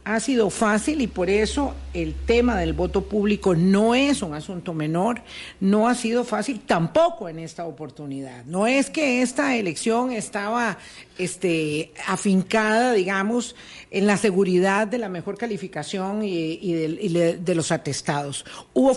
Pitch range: 170-235 Hz